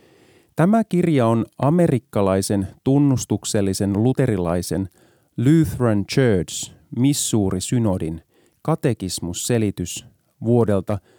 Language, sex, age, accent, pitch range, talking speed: Finnish, male, 30-49, native, 95-130 Hz, 65 wpm